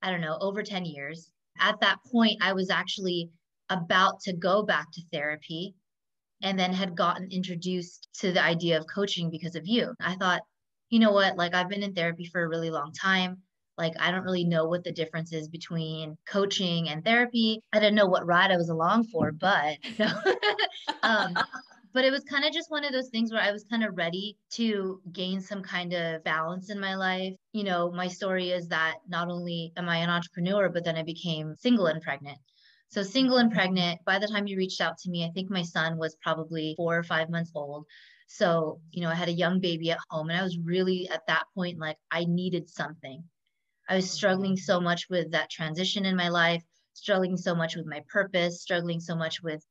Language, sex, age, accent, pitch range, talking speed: English, female, 20-39, American, 165-195 Hz, 215 wpm